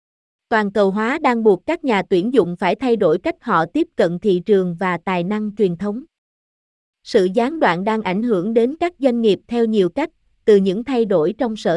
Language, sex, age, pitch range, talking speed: Vietnamese, female, 20-39, 190-245 Hz, 215 wpm